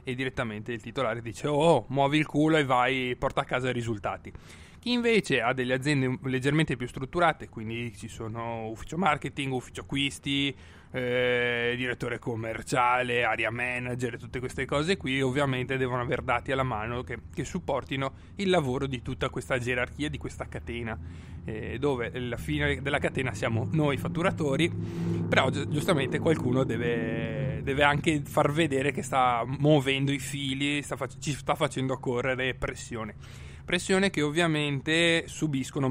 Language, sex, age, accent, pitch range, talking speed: Italian, male, 30-49, native, 120-145 Hz, 150 wpm